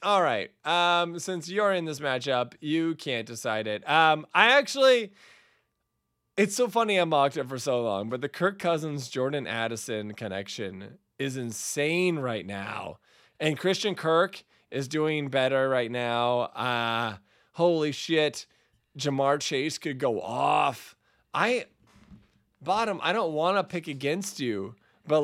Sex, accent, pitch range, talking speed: male, American, 125-180 Hz, 145 wpm